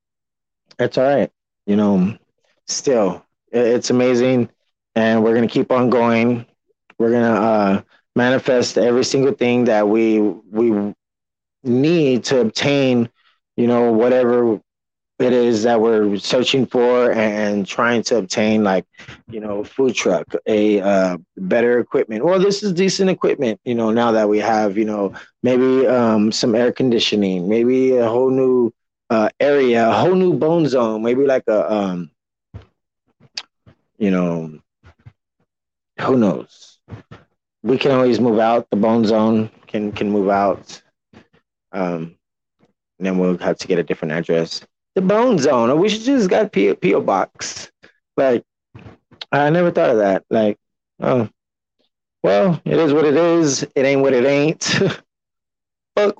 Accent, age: American, 20-39